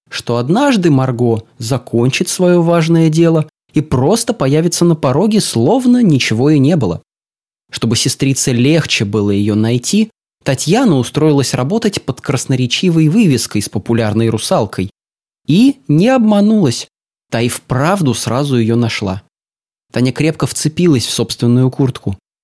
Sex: male